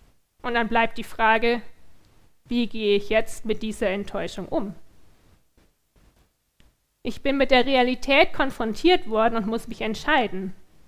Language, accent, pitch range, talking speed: German, German, 205-265 Hz, 130 wpm